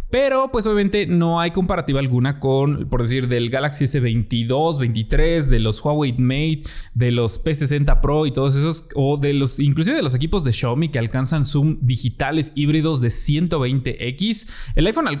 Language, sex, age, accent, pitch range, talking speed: Spanish, male, 20-39, Mexican, 125-160 Hz, 170 wpm